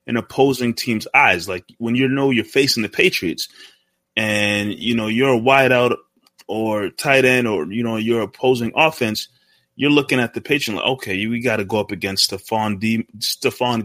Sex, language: male, English